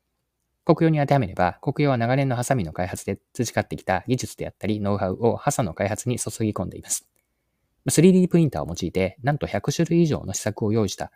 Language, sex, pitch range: Japanese, male, 95-130 Hz